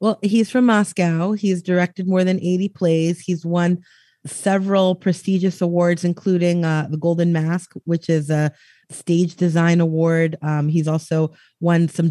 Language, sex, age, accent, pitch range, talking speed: English, female, 30-49, American, 160-190 Hz, 155 wpm